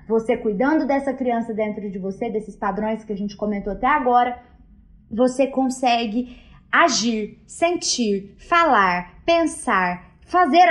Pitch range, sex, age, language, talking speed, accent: 230-310 Hz, female, 20-39, Portuguese, 125 wpm, Brazilian